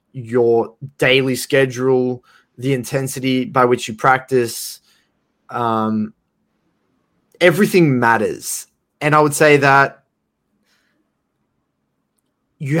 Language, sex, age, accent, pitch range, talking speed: English, male, 20-39, Australian, 125-165 Hz, 85 wpm